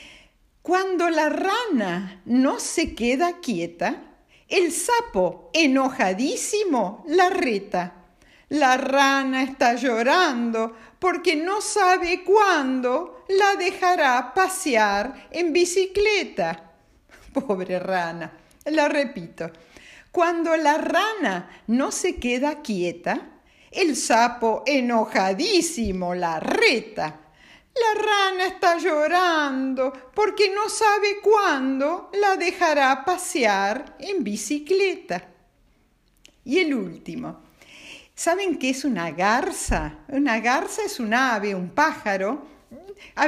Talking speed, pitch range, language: 95 wpm, 220-355 Hz, Spanish